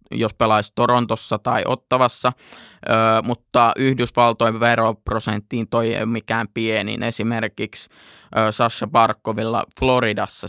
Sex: male